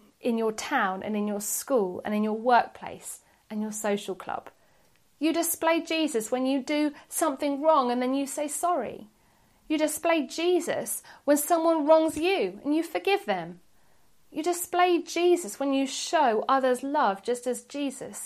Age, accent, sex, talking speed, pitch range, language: 40-59, British, female, 165 wpm, 220-300 Hz, English